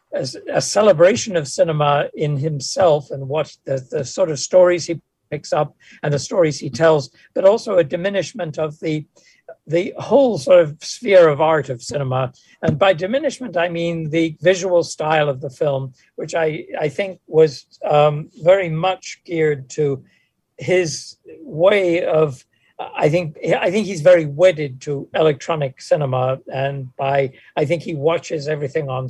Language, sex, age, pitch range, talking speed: English, male, 60-79, 145-180 Hz, 165 wpm